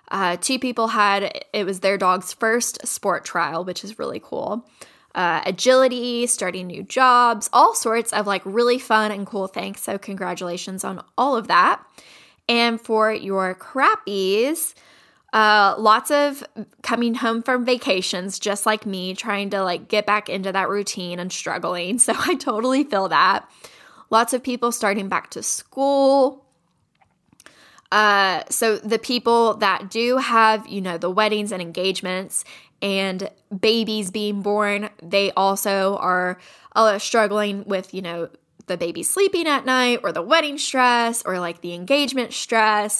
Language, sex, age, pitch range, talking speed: English, female, 10-29, 195-245 Hz, 155 wpm